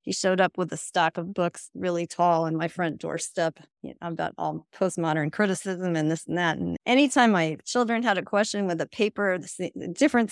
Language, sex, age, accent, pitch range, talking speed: English, female, 40-59, American, 165-210 Hz, 215 wpm